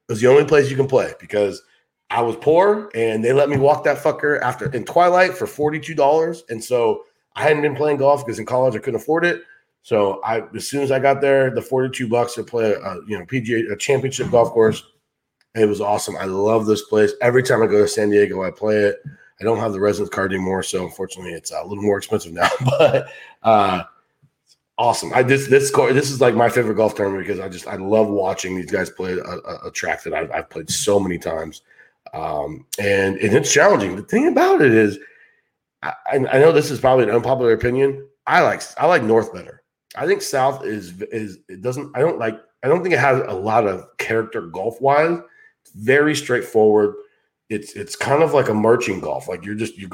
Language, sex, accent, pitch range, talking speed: English, male, American, 105-145 Hz, 225 wpm